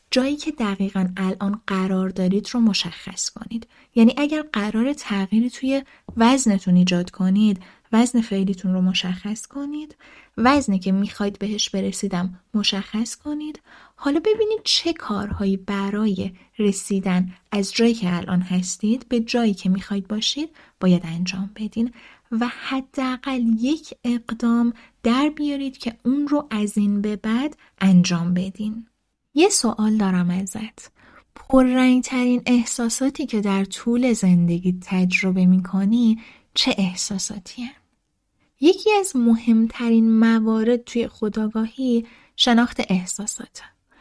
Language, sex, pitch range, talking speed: Persian, female, 195-245 Hz, 115 wpm